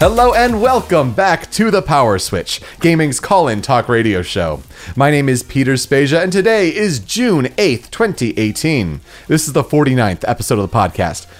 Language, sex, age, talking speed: English, male, 30-49, 170 wpm